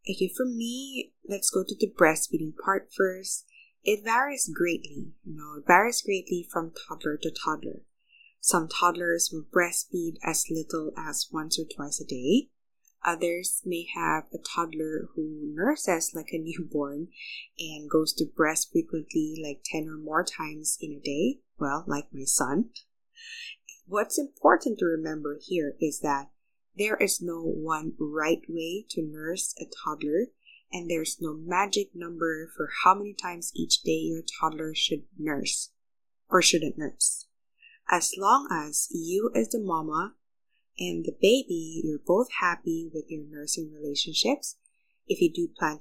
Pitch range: 155-200 Hz